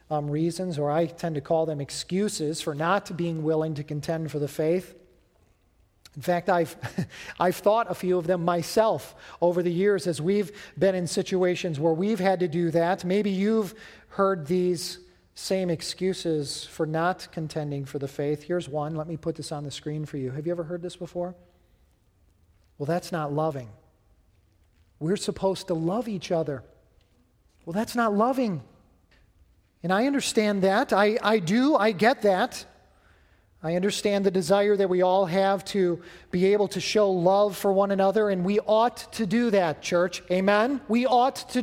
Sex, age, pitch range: male, 40-59, 155-215 Hz